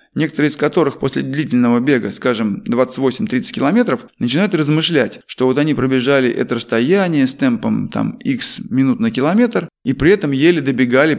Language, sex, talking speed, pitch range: Russian, male, 150 wpm, 130-195 Hz